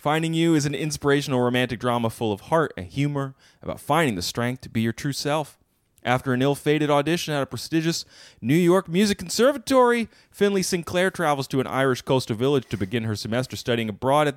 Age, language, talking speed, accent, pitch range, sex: 30-49, English, 195 wpm, American, 110-165 Hz, male